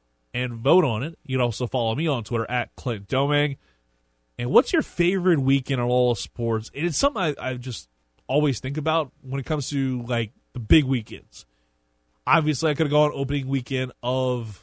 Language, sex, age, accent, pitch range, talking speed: English, male, 20-39, American, 110-145 Hz, 195 wpm